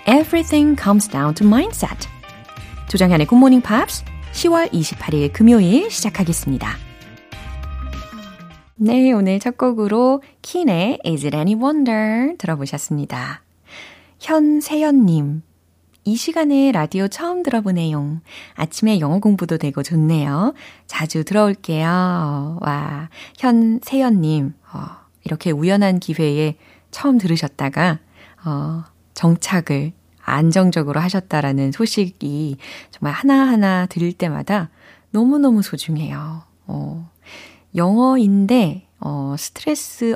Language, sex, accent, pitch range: Korean, female, native, 150-230 Hz